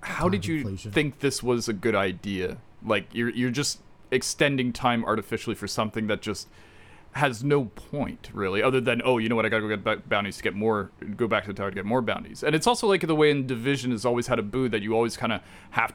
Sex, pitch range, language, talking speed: male, 105-140 Hz, English, 250 wpm